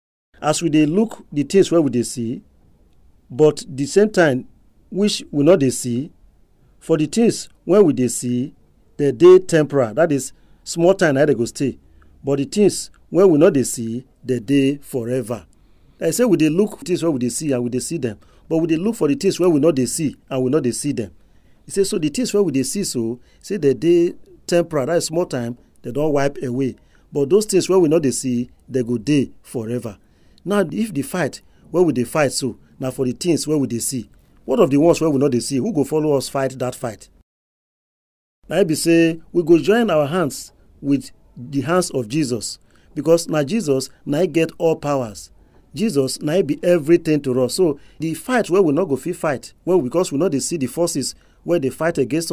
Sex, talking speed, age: male, 225 wpm, 40-59